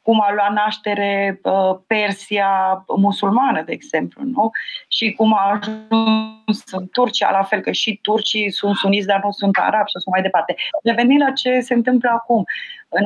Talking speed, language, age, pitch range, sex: 175 wpm, Romanian, 30-49, 195-235 Hz, female